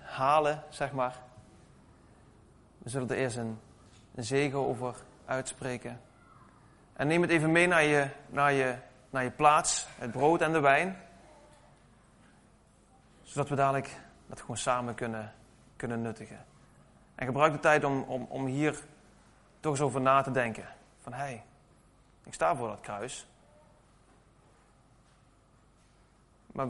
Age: 30-49